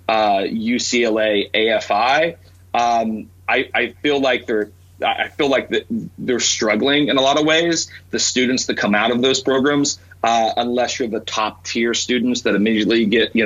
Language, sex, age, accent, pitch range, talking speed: English, male, 30-49, American, 105-125 Hz, 170 wpm